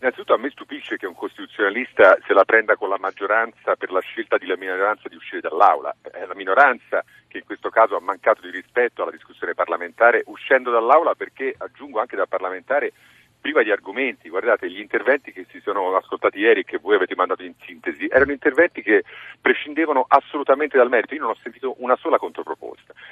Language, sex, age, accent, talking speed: Italian, male, 40-59, native, 195 wpm